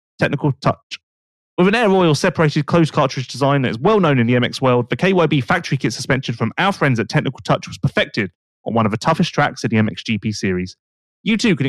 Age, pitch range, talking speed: 30-49, 120-175 Hz, 225 wpm